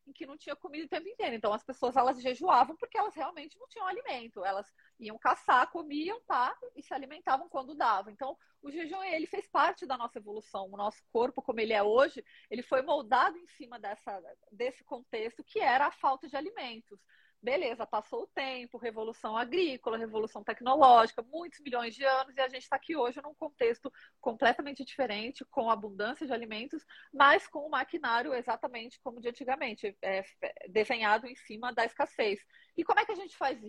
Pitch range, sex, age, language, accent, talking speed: 235-325 Hz, female, 30-49, Portuguese, Brazilian, 185 wpm